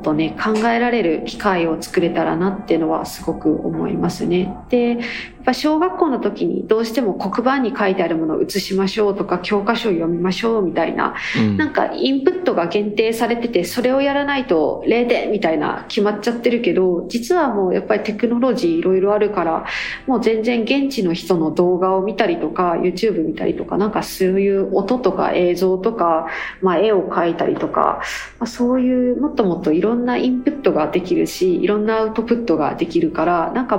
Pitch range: 180-245 Hz